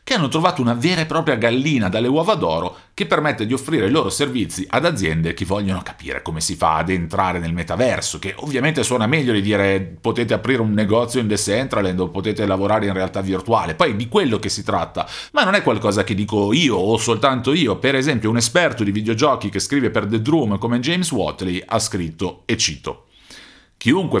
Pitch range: 95-135 Hz